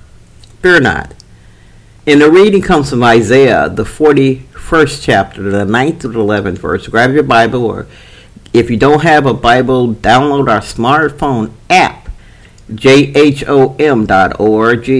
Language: English